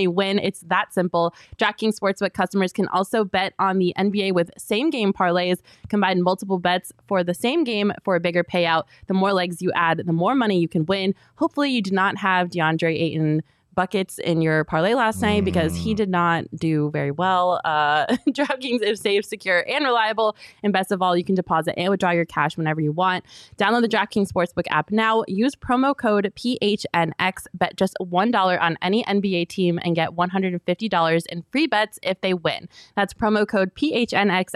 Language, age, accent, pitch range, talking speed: English, 20-39, American, 175-225 Hz, 195 wpm